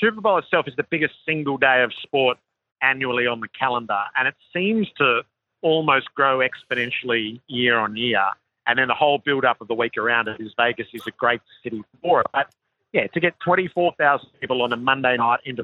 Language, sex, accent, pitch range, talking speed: English, male, Australian, 115-140 Hz, 205 wpm